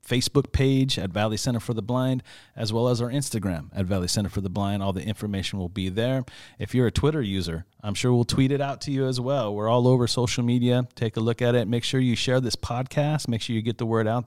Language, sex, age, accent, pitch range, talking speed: English, male, 30-49, American, 105-125 Hz, 265 wpm